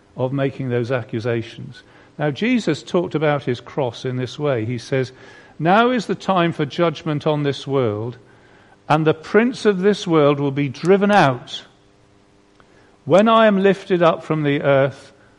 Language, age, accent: English, 50-69, British